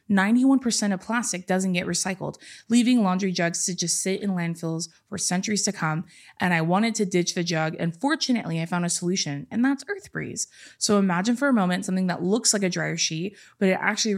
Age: 20-39